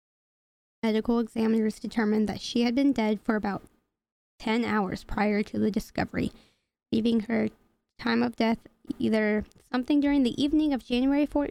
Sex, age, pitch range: female, 10-29, 215-235 Hz